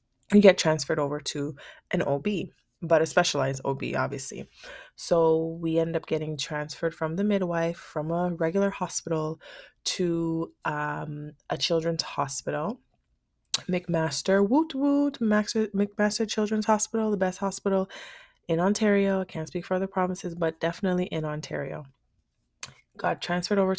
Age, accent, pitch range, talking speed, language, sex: 20-39, American, 150-180 Hz, 140 wpm, English, female